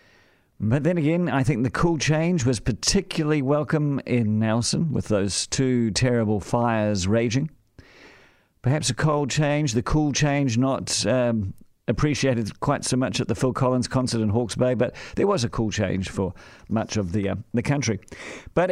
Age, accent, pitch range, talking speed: 50-69, British, 110-150 Hz, 175 wpm